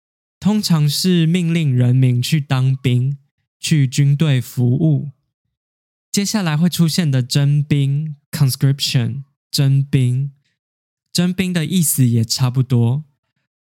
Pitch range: 130-160 Hz